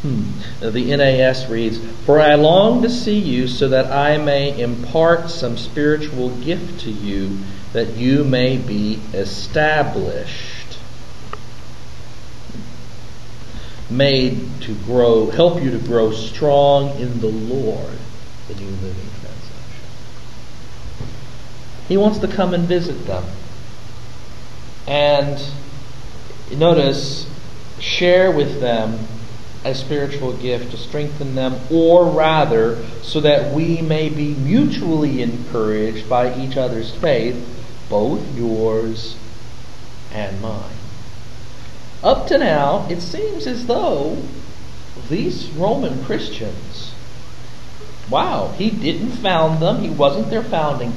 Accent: American